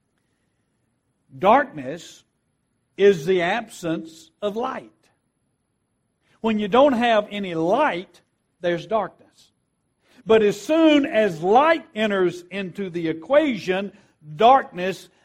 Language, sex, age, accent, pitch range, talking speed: English, male, 60-79, American, 160-230 Hz, 95 wpm